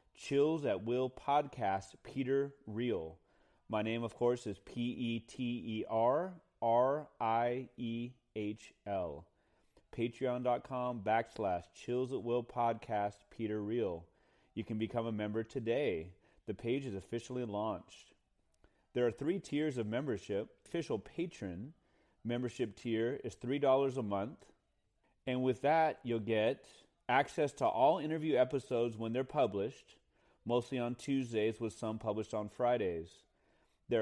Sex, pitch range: male, 105-130 Hz